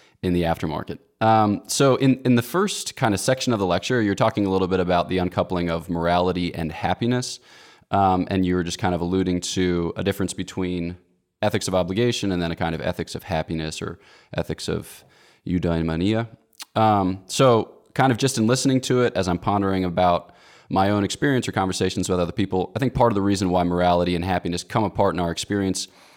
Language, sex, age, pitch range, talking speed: English, male, 20-39, 85-105 Hz, 205 wpm